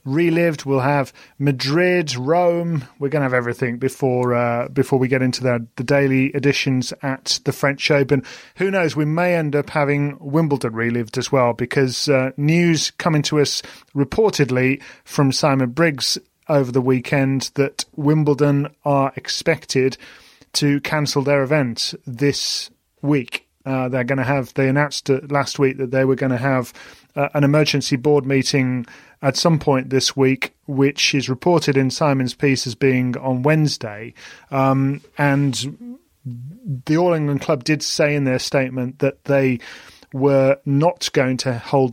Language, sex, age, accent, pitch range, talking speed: English, male, 30-49, British, 130-145 Hz, 160 wpm